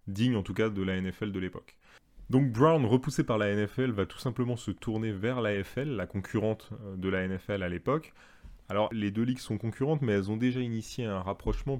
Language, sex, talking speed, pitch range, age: French, male, 220 wpm, 100-125 Hz, 30-49